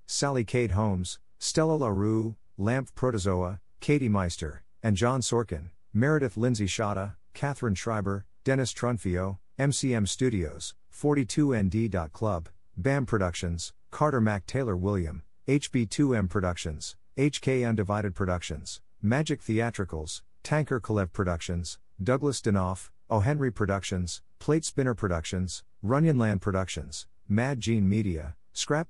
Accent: American